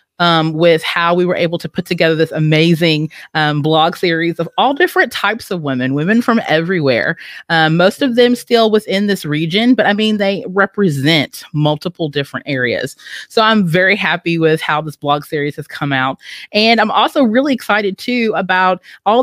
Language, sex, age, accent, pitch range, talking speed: English, female, 30-49, American, 150-185 Hz, 185 wpm